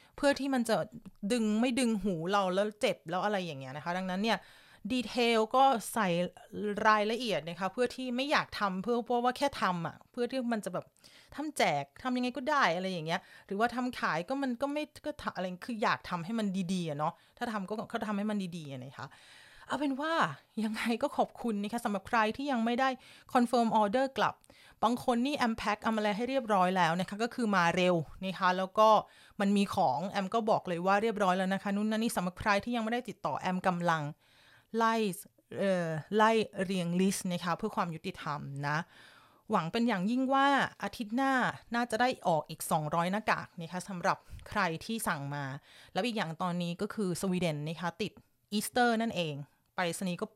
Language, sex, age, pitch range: Thai, female, 30-49, 180-235 Hz